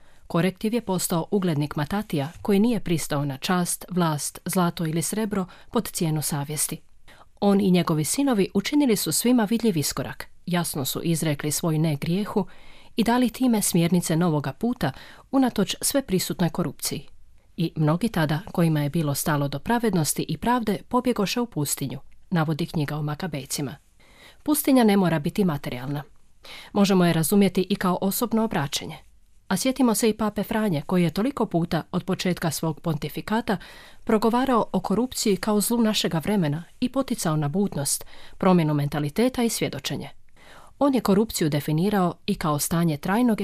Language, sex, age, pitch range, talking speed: Croatian, female, 30-49, 155-210 Hz, 150 wpm